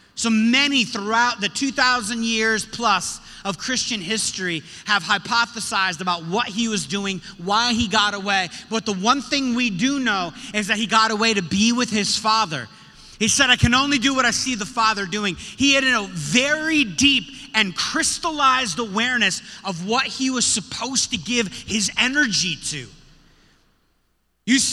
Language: English